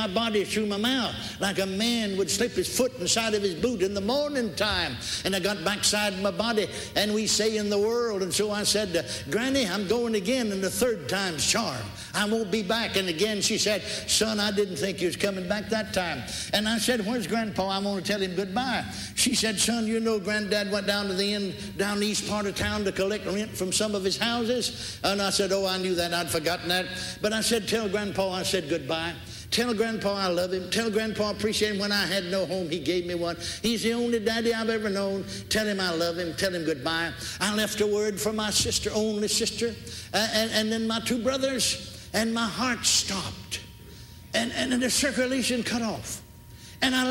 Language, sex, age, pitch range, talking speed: English, male, 60-79, 190-225 Hz, 230 wpm